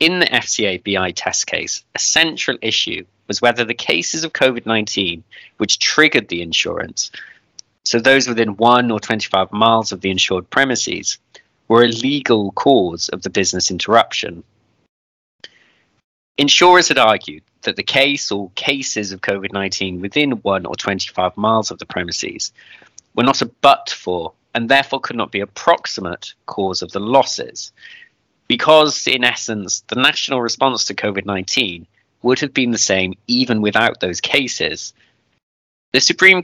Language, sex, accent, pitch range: English, male, British, 100-135 Hz